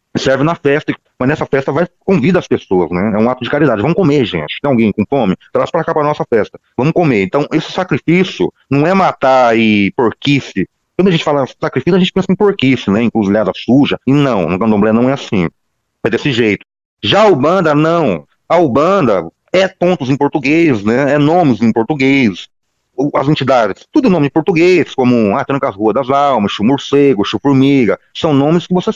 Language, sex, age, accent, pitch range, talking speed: Portuguese, male, 40-59, Brazilian, 110-155 Hz, 205 wpm